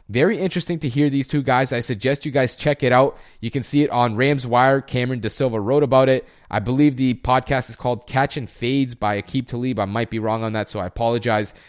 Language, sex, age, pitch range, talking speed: English, male, 30-49, 120-150 Hz, 240 wpm